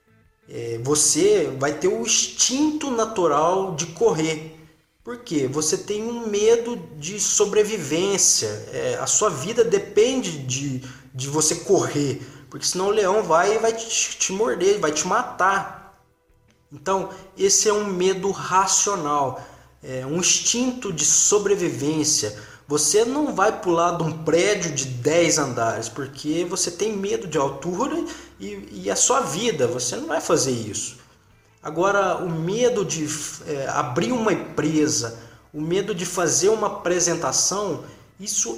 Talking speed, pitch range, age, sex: 130 wpm, 135-205 Hz, 20-39, male